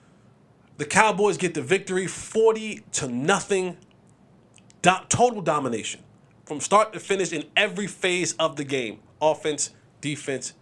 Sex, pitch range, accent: male, 130-185 Hz, American